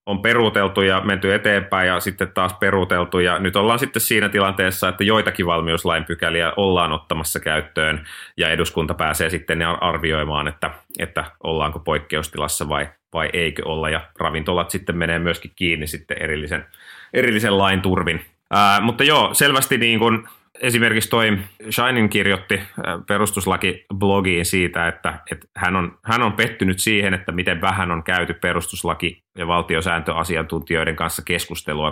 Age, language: 30-49, Finnish